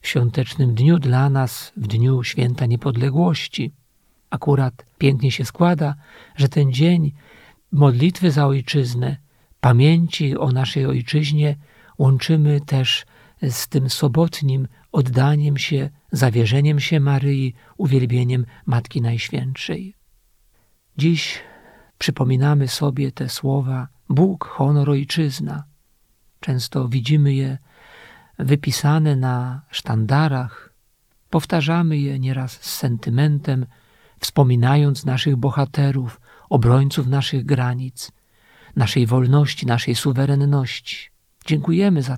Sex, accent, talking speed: male, native, 95 wpm